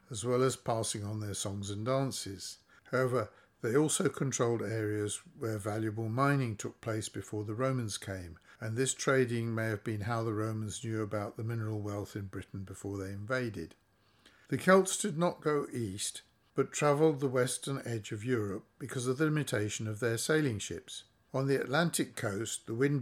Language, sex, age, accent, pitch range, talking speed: English, male, 60-79, British, 105-135 Hz, 180 wpm